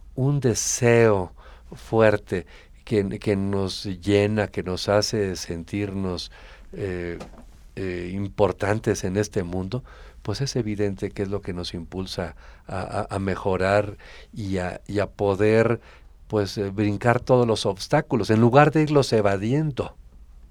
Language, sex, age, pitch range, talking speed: Spanish, male, 50-69, 95-110 Hz, 125 wpm